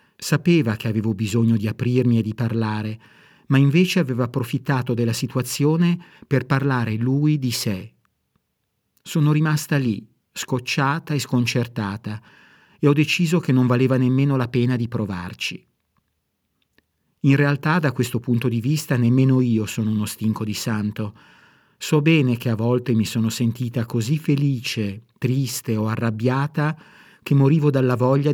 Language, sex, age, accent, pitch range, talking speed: Italian, male, 50-69, native, 115-145 Hz, 145 wpm